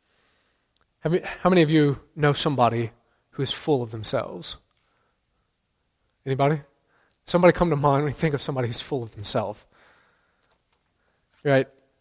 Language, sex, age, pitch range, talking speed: English, male, 20-39, 130-170 Hz, 130 wpm